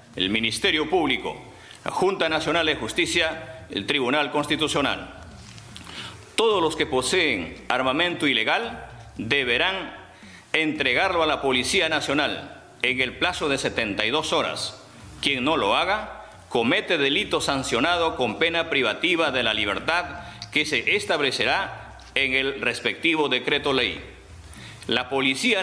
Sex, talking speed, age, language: male, 120 wpm, 50-69, Portuguese